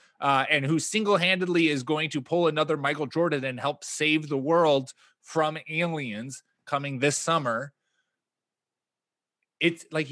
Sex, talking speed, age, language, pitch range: male, 135 wpm, 20-39, English, 135-165 Hz